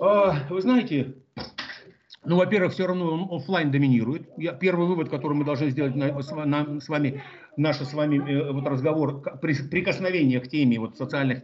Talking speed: 135 wpm